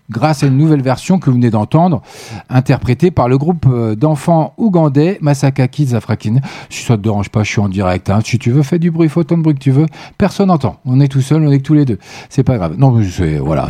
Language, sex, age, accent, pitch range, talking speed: French, male, 40-59, French, 125-160 Hz, 260 wpm